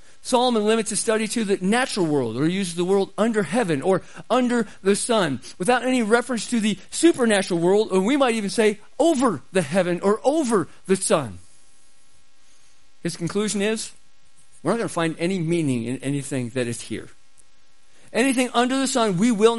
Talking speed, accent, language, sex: 180 wpm, American, English, male